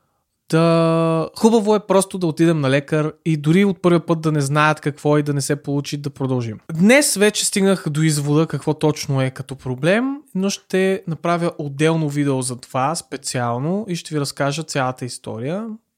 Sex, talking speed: male, 185 wpm